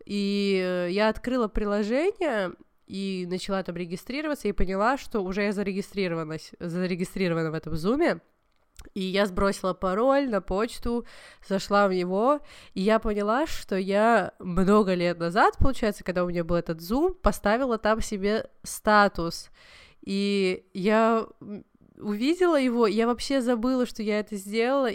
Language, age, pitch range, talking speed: Russian, 20-39, 200-250 Hz, 135 wpm